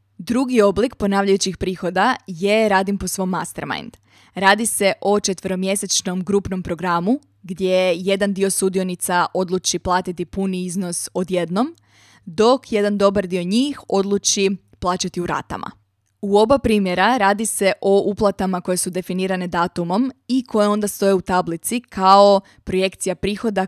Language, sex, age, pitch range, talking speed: Croatian, female, 20-39, 185-210 Hz, 135 wpm